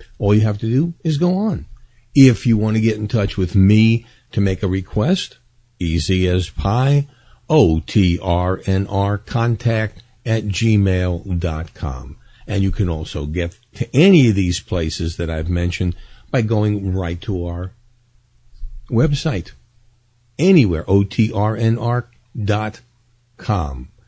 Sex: male